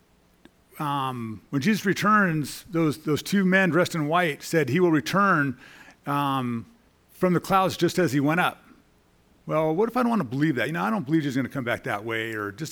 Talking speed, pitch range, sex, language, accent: 225 wpm, 135-180 Hz, male, English, American